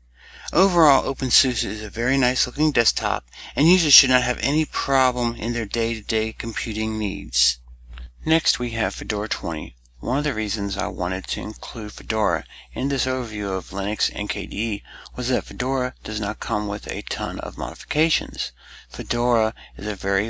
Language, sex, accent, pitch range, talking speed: English, male, American, 105-130 Hz, 165 wpm